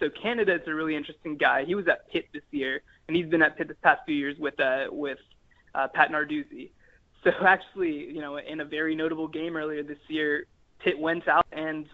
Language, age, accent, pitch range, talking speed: English, 20-39, American, 150-190 Hz, 220 wpm